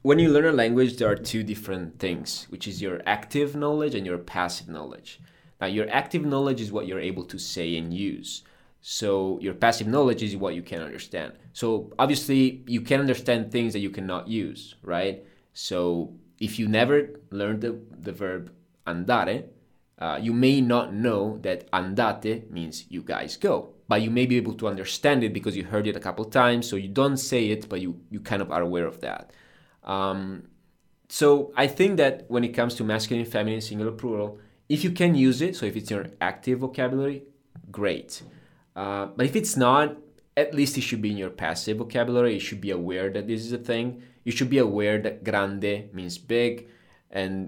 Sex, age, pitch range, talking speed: male, 20-39, 95-125 Hz, 200 wpm